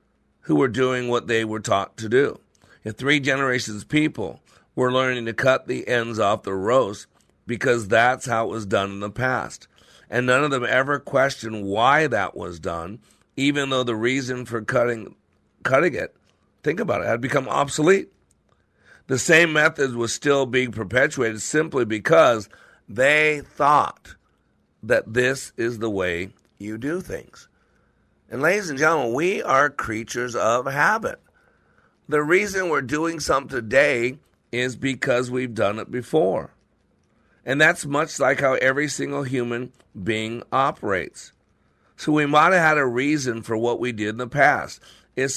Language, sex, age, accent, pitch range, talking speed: English, male, 50-69, American, 110-140 Hz, 160 wpm